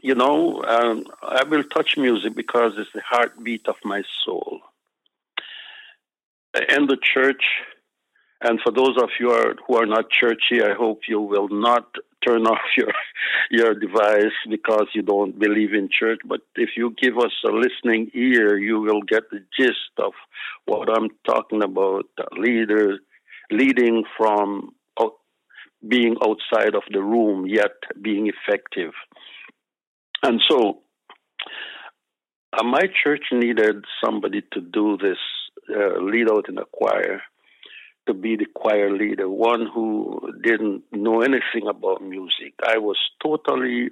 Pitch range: 105-135 Hz